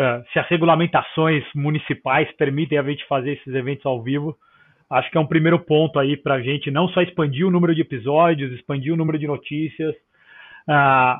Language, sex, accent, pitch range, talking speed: Portuguese, male, Brazilian, 145-180 Hz, 195 wpm